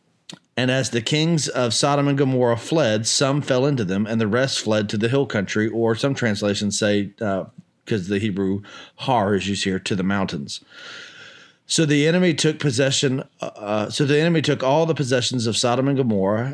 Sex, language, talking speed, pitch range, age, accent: male, English, 190 wpm, 105-135 Hz, 40-59, American